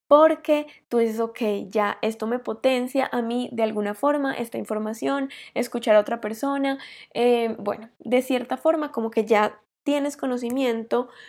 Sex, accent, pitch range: female, Colombian, 220-260 Hz